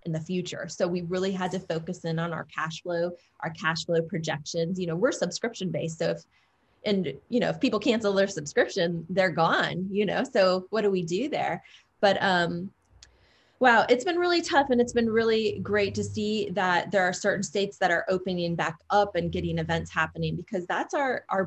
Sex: female